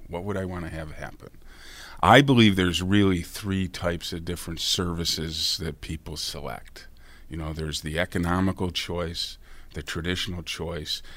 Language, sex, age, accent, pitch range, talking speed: English, male, 50-69, American, 80-95 Hz, 150 wpm